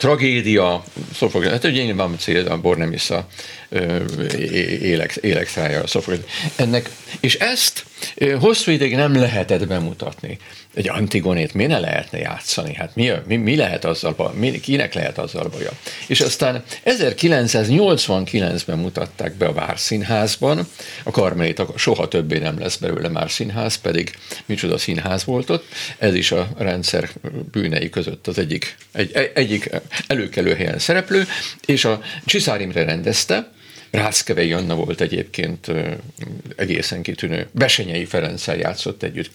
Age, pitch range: 50-69, 100-145 Hz